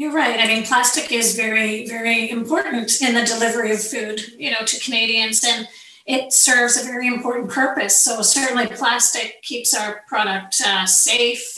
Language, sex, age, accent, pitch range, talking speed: English, female, 40-59, American, 215-255 Hz, 170 wpm